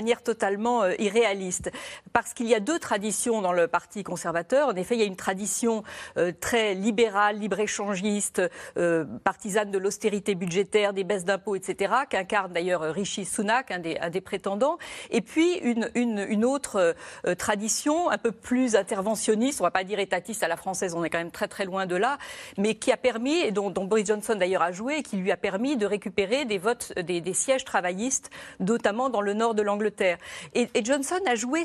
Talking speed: 200 wpm